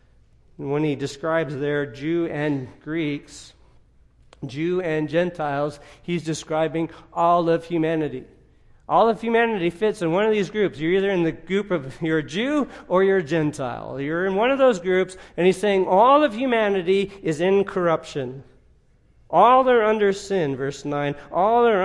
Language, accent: English, American